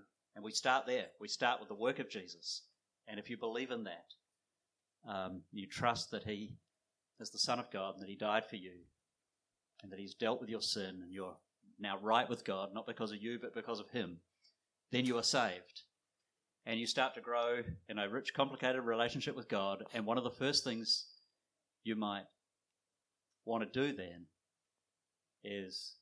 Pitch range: 100-135 Hz